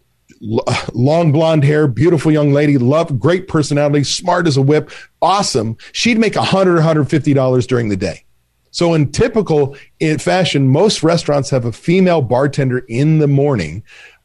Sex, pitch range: male, 135-180 Hz